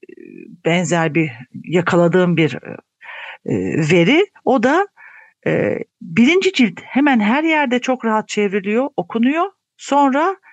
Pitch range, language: 170-255 Hz, Turkish